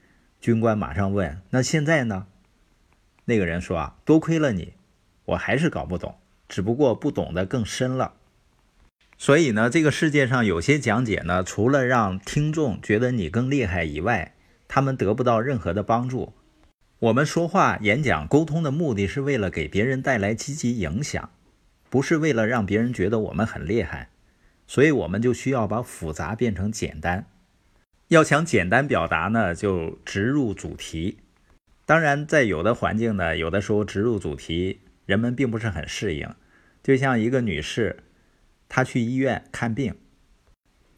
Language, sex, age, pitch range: Chinese, male, 50-69, 95-135 Hz